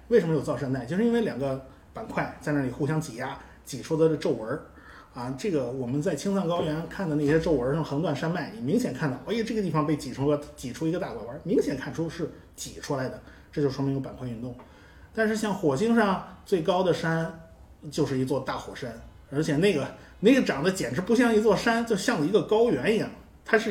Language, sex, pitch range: Chinese, male, 130-165 Hz